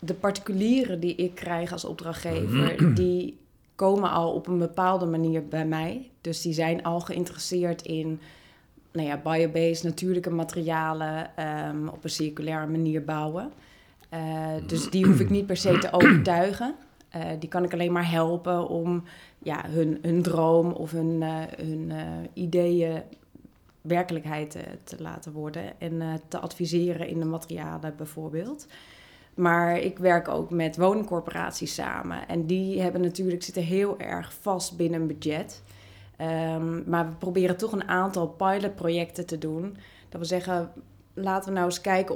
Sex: female